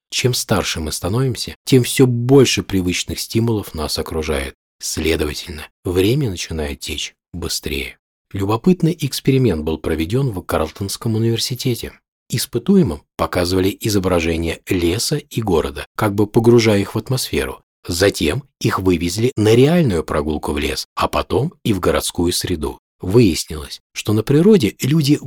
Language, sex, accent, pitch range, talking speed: Russian, male, native, 85-130 Hz, 130 wpm